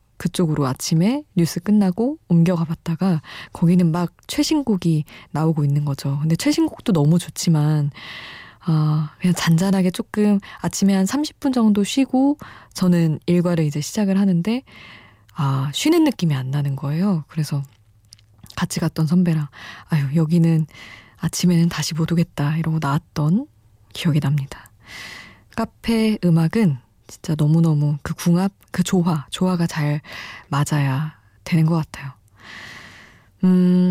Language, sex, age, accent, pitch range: Korean, female, 20-39, native, 150-195 Hz